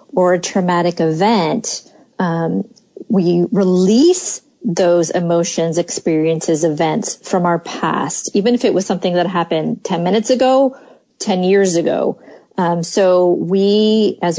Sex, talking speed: female, 130 wpm